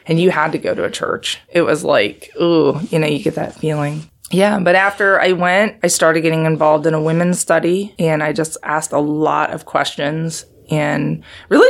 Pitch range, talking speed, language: 145-175 Hz, 210 wpm, English